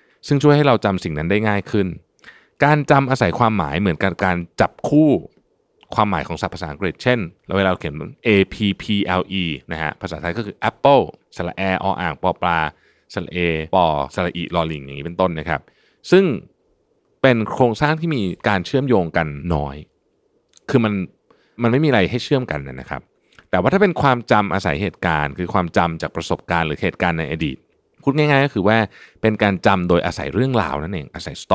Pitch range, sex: 85-120 Hz, male